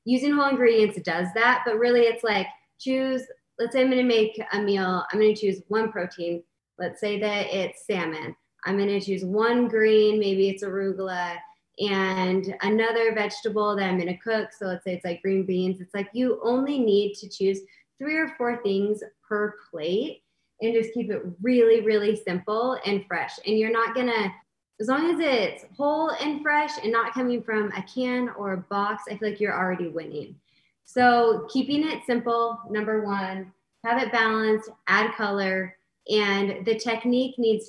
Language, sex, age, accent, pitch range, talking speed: English, female, 20-39, American, 195-235 Hz, 190 wpm